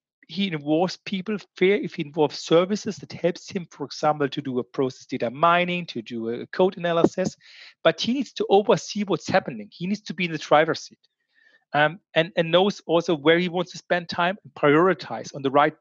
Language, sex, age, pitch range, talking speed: English, male, 40-59, 140-180 Hz, 205 wpm